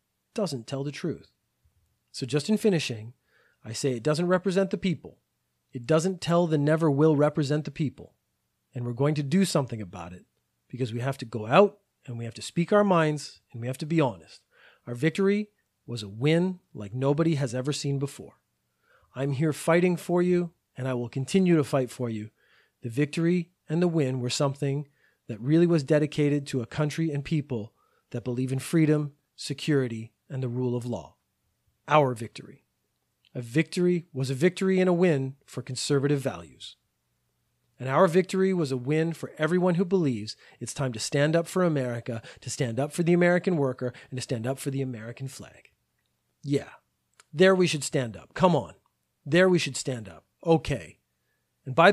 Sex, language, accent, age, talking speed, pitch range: male, English, American, 30-49, 185 wpm, 125-170 Hz